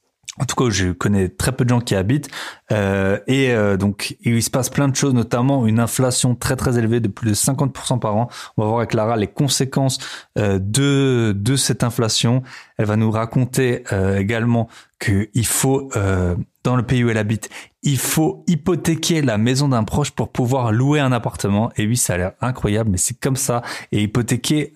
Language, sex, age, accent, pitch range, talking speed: French, male, 20-39, French, 105-130 Hz, 205 wpm